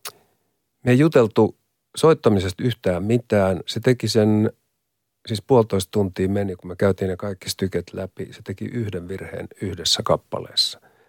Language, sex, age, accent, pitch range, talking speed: Finnish, male, 50-69, native, 100-120 Hz, 140 wpm